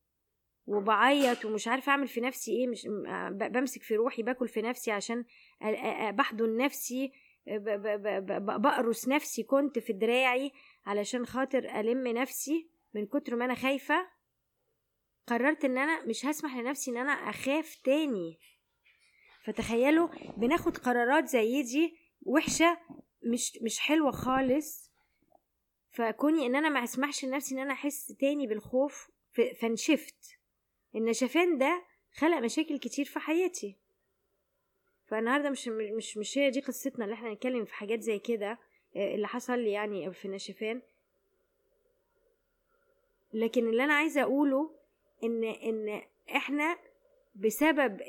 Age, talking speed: 20-39, 120 wpm